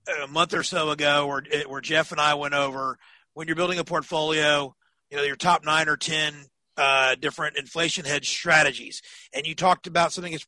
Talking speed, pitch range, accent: 200 wpm, 140-170 Hz, American